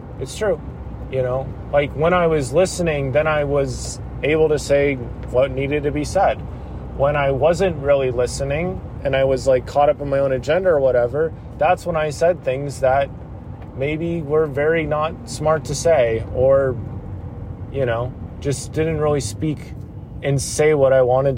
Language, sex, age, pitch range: English, male, 30-49, 115-145 Hz